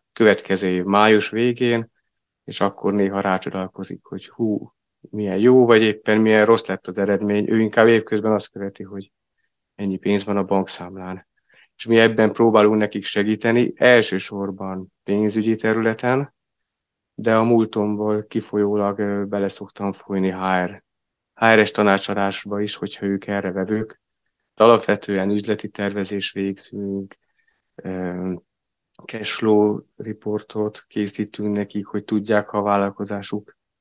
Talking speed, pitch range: 120 wpm, 100-110 Hz